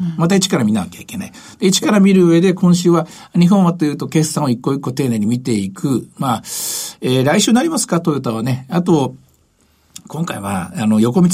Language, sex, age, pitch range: Japanese, male, 60-79, 135-185 Hz